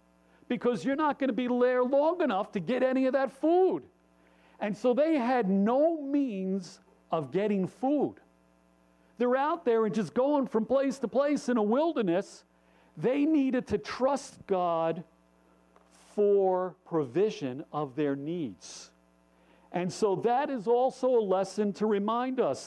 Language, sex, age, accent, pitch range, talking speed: English, male, 50-69, American, 155-235 Hz, 150 wpm